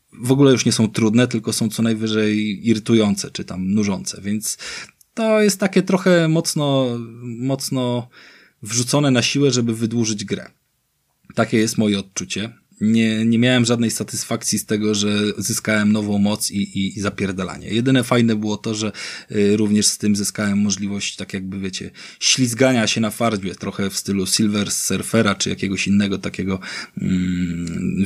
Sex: male